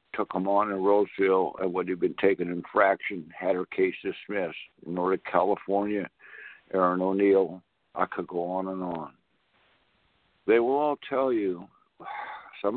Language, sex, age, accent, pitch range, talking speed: English, male, 60-79, American, 95-115 Hz, 150 wpm